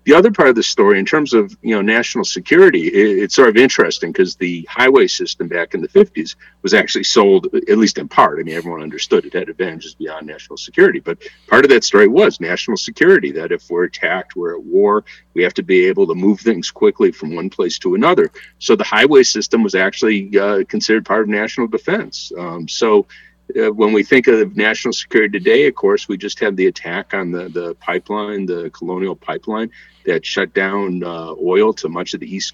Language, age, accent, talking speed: English, 50-69, American, 215 wpm